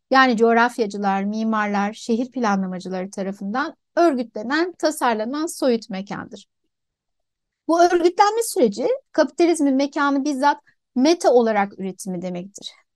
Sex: female